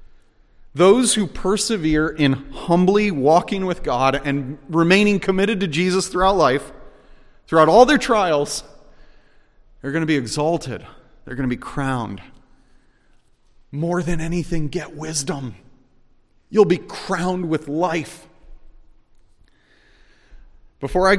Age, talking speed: 30-49, 115 wpm